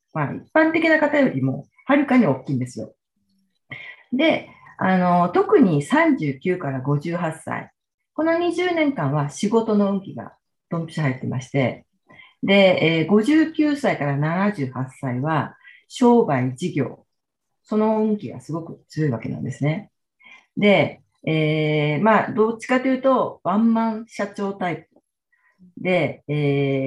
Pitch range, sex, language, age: 140-210 Hz, female, Japanese, 40-59